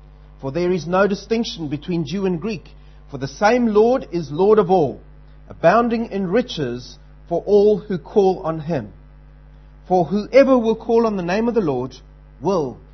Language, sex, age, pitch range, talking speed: English, male, 40-59, 140-220 Hz, 170 wpm